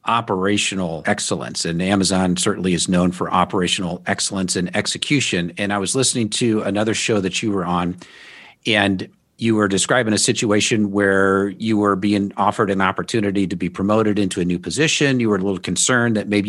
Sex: male